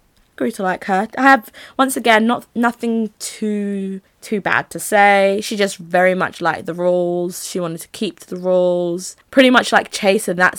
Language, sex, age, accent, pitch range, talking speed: English, female, 20-39, British, 180-240 Hz, 185 wpm